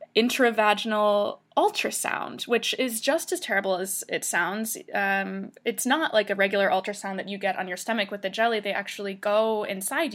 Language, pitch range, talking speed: English, 195-255 Hz, 175 wpm